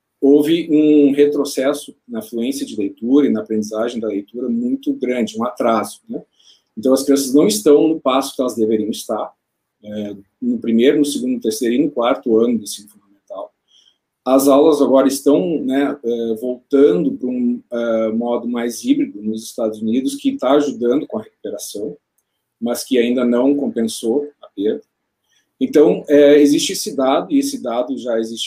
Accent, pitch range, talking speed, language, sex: Brazilian, 110-145 Hz, 165 wpm, Portuguese, male